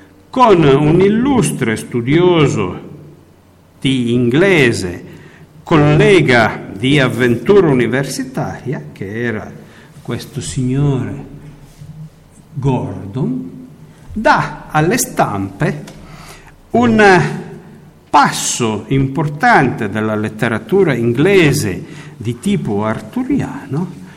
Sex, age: male, 50-69